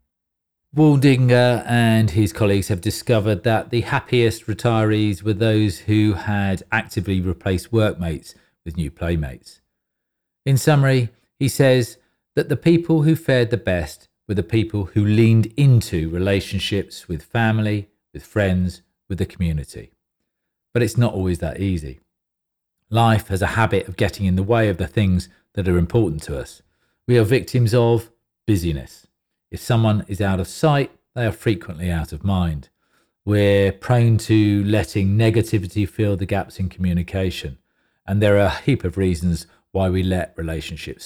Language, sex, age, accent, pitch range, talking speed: English, male, 40-59, British, 95-120 Hz, 155 wpm